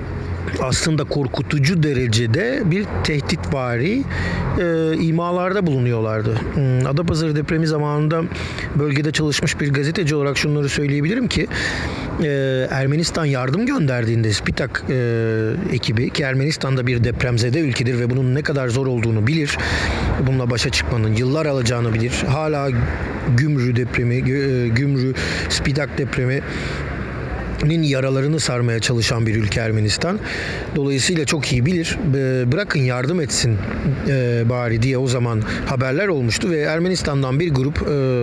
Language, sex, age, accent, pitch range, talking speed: Turkish, male, 50-69, native, 120-150 Hz, 115 wpm